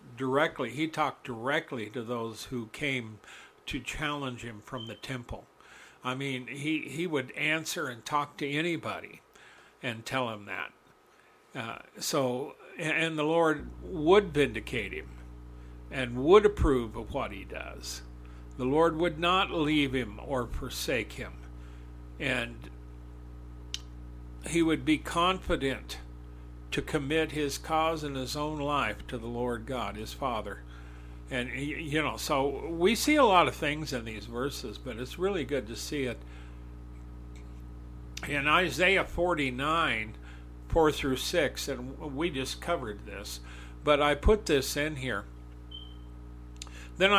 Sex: male